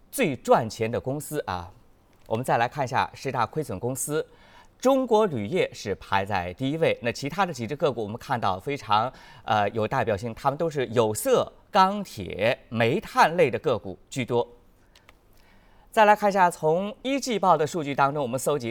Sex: male